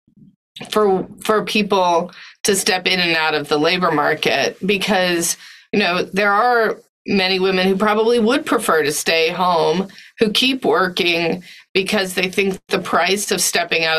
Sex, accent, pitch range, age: female, American, 165-205 Hz, 30-49